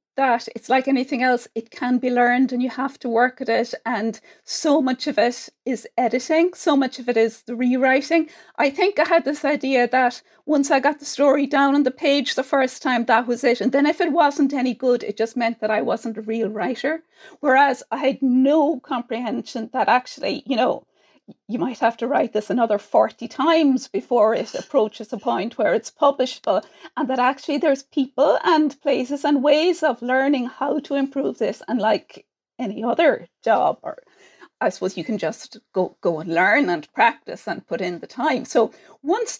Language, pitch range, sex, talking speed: English, 245-305 Hz, female, 205 wpm